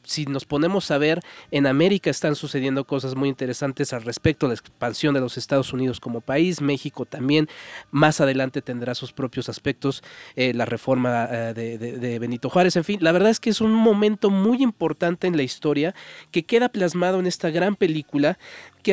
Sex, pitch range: male, 135-190 Hz